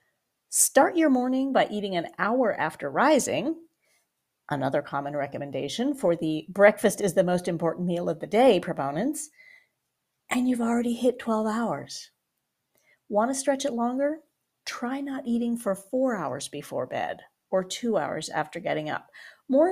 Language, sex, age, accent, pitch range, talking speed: English, female, 40-59, American, 170-260 Hz, 150 wpm